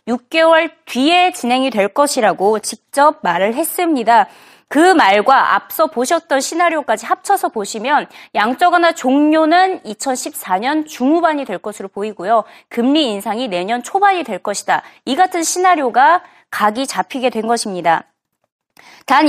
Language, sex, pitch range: Korean, female, 225-335 Hz